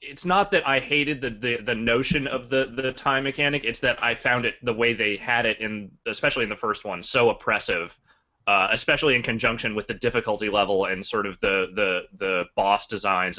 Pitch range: 100-140 Hz